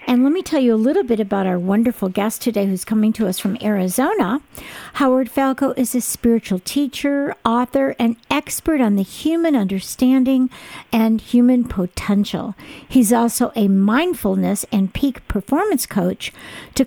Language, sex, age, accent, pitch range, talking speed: English, female, 50-69, American, 200-255 Hz, 155 wpm